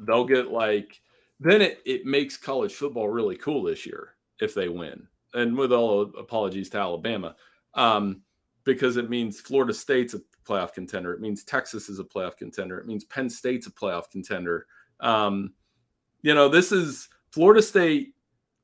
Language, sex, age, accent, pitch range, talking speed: English, male, 40-59, American, 105-135 Hz, 175 wpm